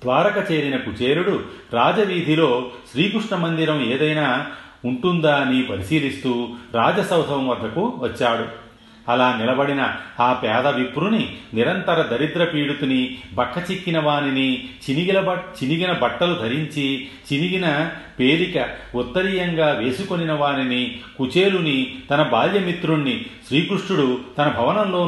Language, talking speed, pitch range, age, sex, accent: Telugu, 95 wpm, 125-160 Hz, 40-59, male, native